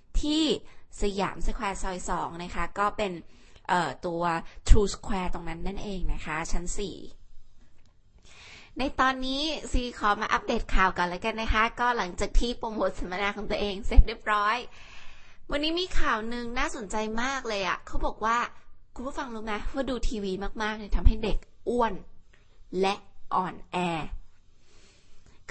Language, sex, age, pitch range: Thai, female, 20-39, 185-240 Hz